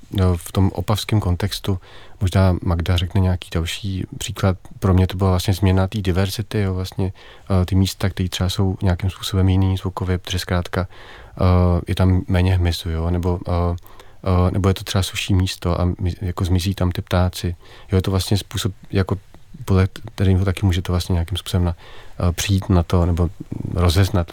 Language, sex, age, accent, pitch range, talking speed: Czech, male, 40-59, native, 90-100 Hz, 170 wpm